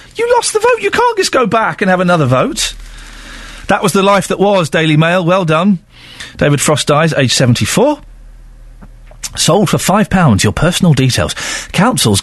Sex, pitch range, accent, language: male, 120-185 Hz, British, English